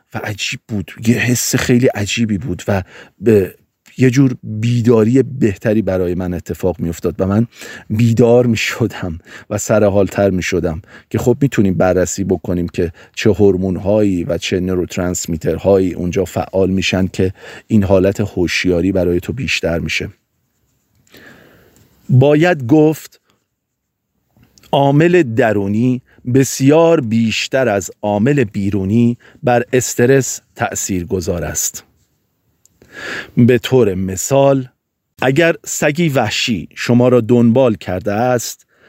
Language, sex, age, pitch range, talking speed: Persian, male, 40-59, 95-135 Hz, 120 wpm